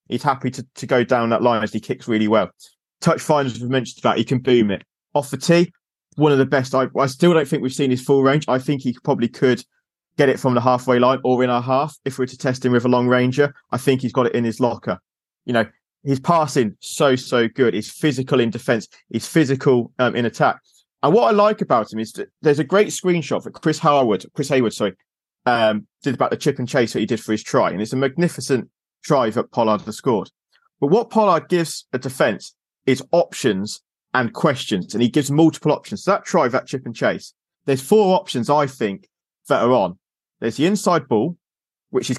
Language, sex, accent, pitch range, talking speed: English, male, British, 120-145 Hz, 230 wpm